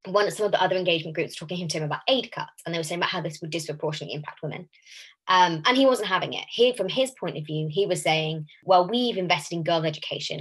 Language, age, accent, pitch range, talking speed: English, 20-39, British, 165-205 Hz, 265 wpm